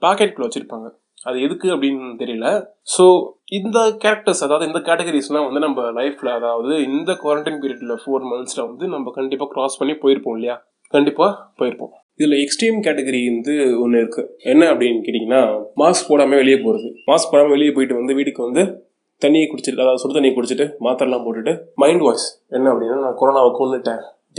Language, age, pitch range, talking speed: Tamil, 20-39, 120-155 Hz, 160 wpm